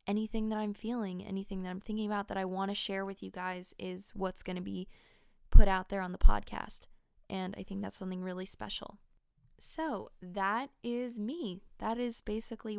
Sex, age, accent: female, 20-39, American